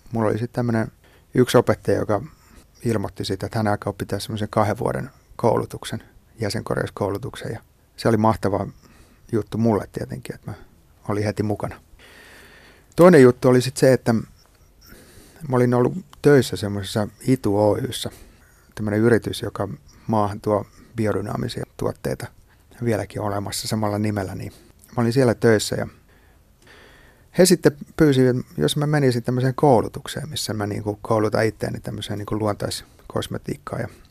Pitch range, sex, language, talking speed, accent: 100-125 Hz, male, Finnish, 130 wpm, native